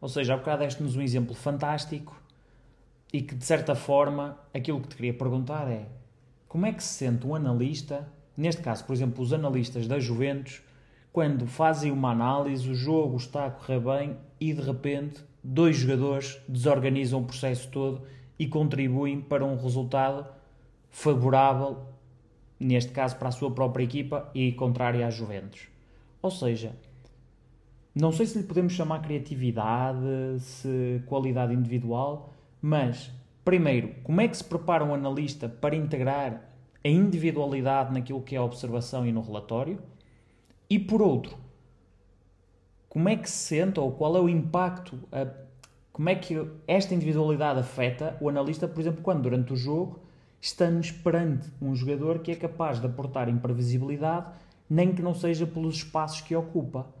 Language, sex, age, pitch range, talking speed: Portuguese, male, 20-39, 125-155 Hz, 155 wpm